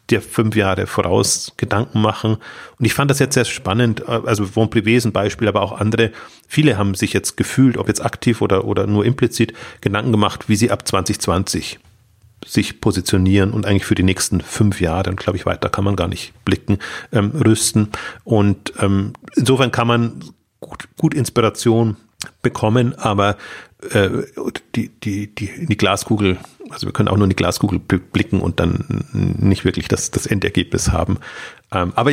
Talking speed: 170 wpm